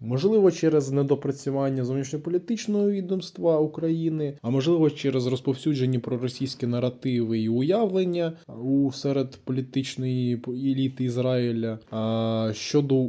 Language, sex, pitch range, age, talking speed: Ukrainian, male, 115-145 Hz, 20-39, 95 wpm